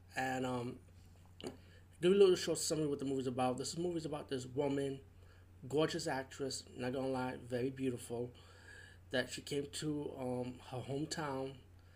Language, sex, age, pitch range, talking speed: English, male, 20-39, 120-150 Hz, 155 wpm